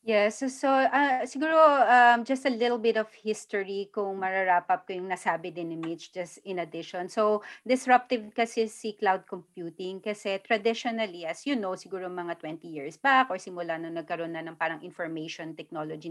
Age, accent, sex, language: 30-49, native, female, Filipino